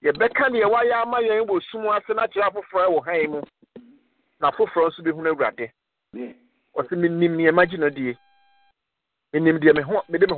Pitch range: 185-260 Hz